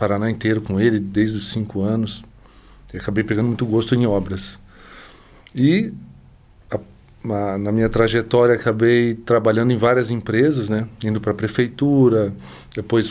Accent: Brazilian